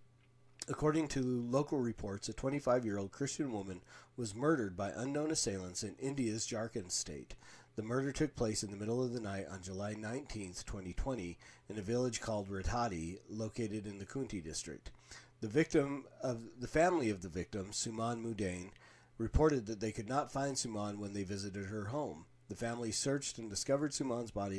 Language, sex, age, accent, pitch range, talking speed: English, male, 40-59, American, 100-125 Hz, 170 wpm